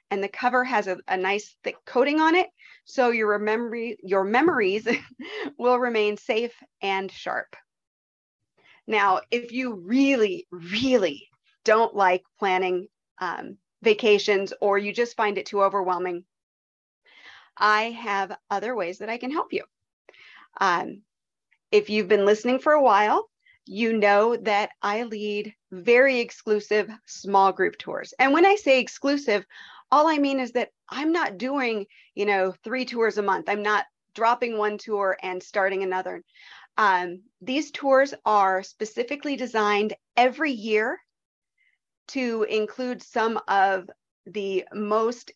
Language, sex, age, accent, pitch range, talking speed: English, female, 40-59, American, 200-255 Hz, 140 wpm